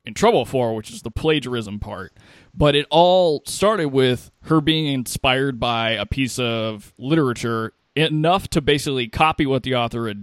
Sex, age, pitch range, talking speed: male, 20-39, 115-145 Hz, 170 wpm